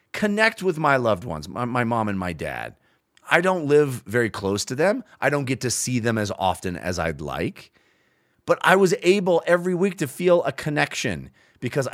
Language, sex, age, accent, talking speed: English, male, 30-49, American, 200 wpm